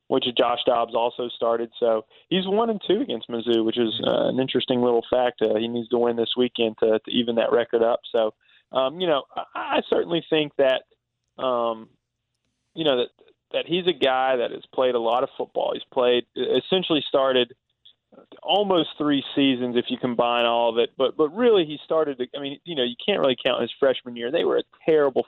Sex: male